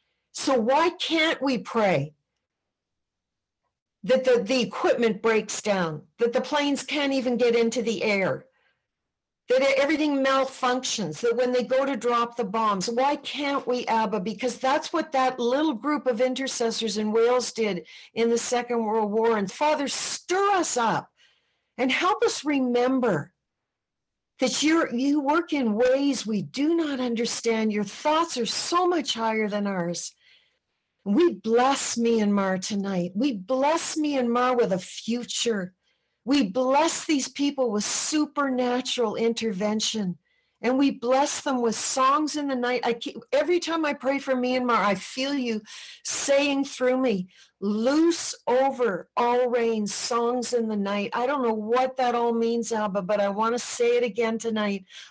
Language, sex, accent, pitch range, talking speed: English, female, American, 220-275 Hz, 155 wpm